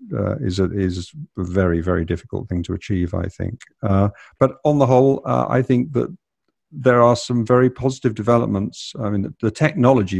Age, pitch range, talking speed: 50-69, 95-120 Hz, 195 wpm